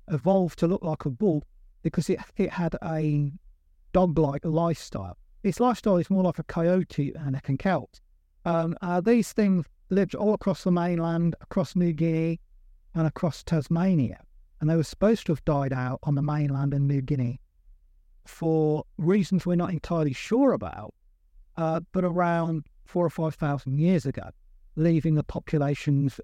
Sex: male